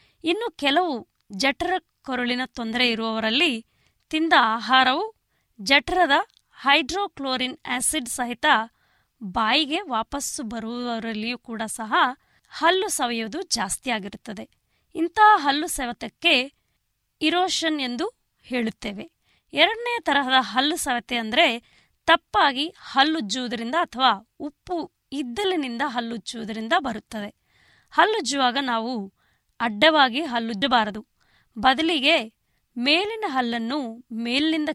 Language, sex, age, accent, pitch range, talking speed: Kannada, female, 20-39, native, 235-325 Hz, 80 wpm